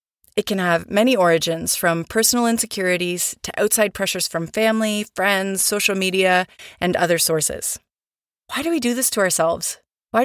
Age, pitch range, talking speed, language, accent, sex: 30-49, 175-215 Hz, 160 wpm, English, American, female